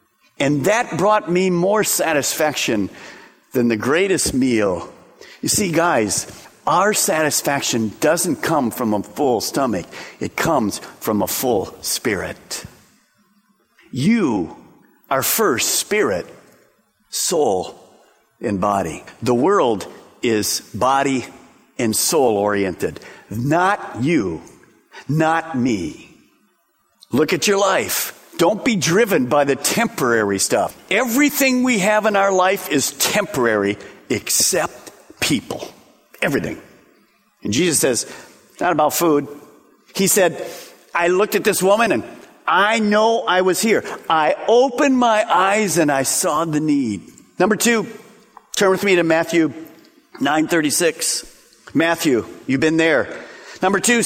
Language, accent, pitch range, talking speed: English, American, 150-215 Hz, 120 wpm